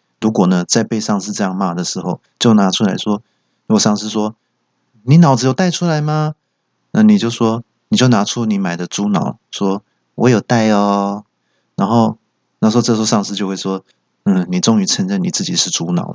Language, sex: Chinese, male